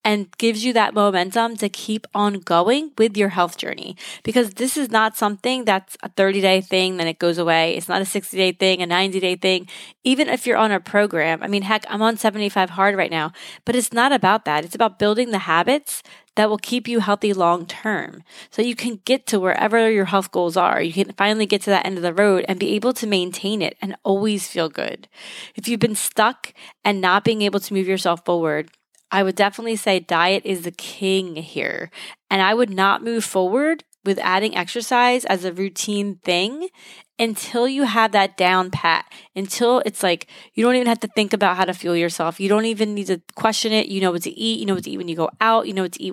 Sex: female